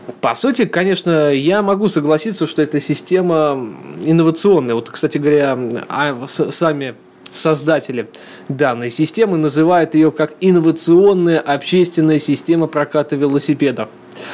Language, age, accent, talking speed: Russian, 20-39, native, 105 wpm